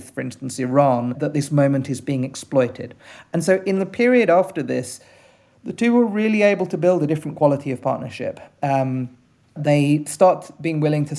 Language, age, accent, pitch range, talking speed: English, 40-59, British, 135-170 Hz, 180 wpm